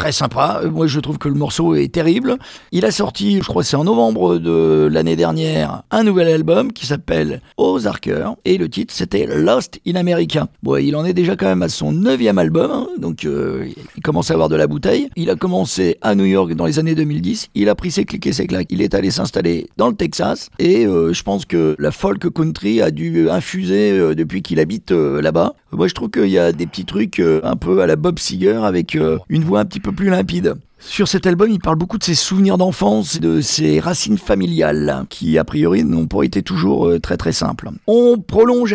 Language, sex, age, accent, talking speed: French, male, 50-69, French, 230 wpm